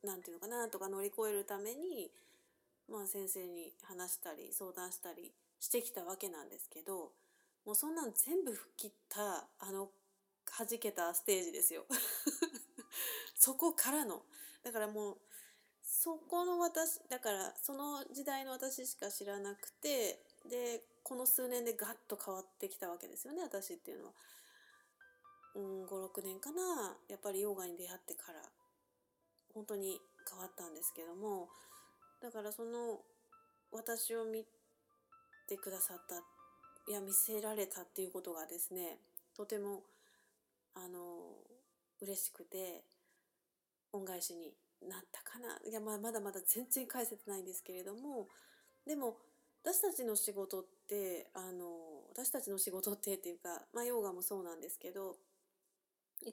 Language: Japanese